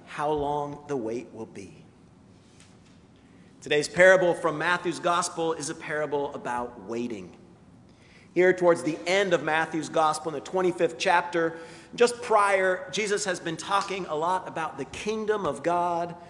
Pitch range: 145-185 Hz